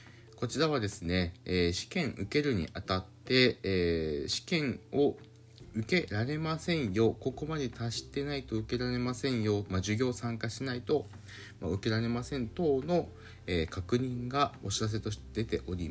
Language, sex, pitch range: Japanese, male, 95-125 Hz